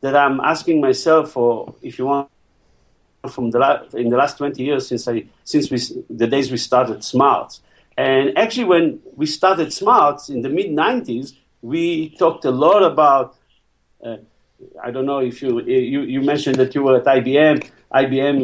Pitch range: 135-205 Hz